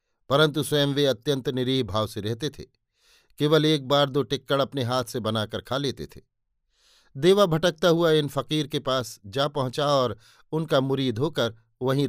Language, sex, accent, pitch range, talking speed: Hindi, male, native, 125-155 Hz, 175 wpm